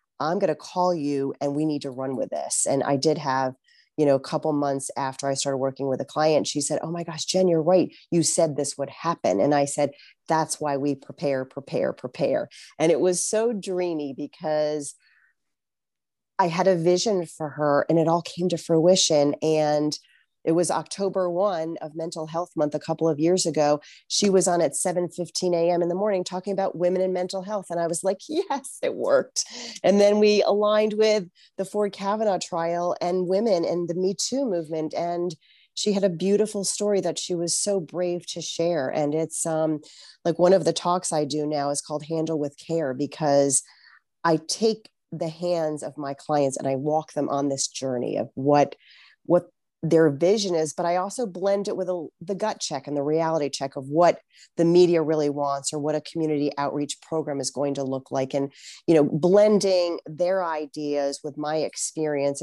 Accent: American